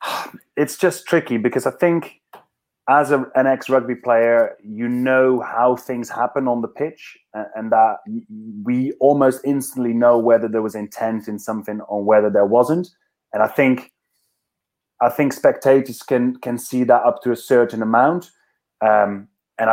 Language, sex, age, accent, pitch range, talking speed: English, male, 30-49, British, 110-130 Hz, 165 wpm